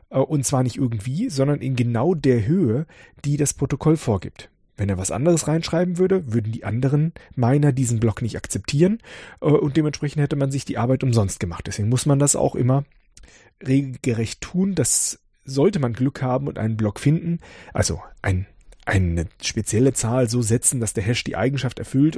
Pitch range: 115-150 Hz